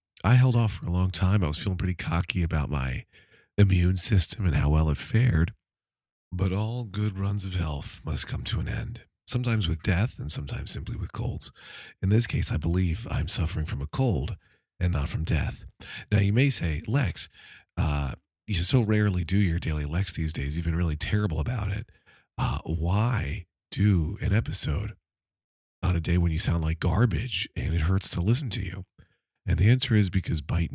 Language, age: English, 40-59